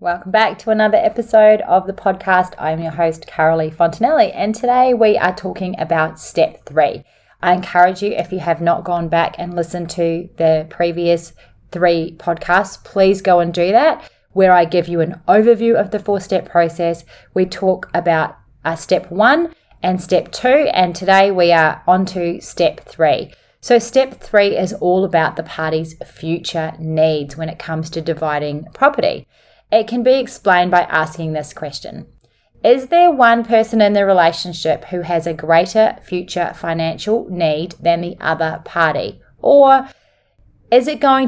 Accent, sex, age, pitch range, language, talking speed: Australian, female, 30-49, 165-215 Hz, English, 165 wpm